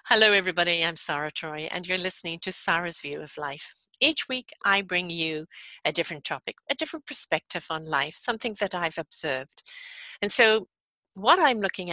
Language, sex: English, female